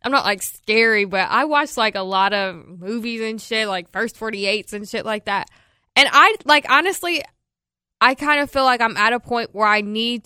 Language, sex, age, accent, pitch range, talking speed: English, female, 10-29, American, 195-230 Hz, 215 wpm